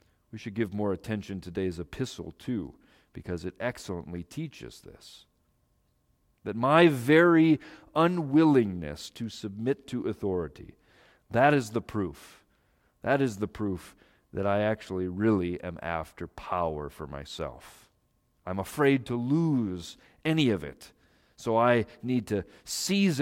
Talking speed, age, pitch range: 130 wpm, 40-59, 95-140 Hz